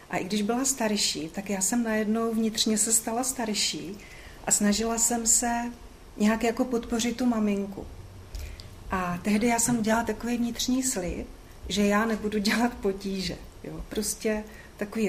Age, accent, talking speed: 40-59, native, 150 wpm